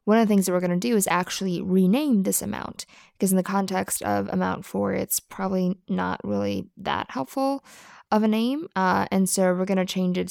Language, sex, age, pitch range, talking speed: English, female, 20-39, 180-200 Hz, 220 wpm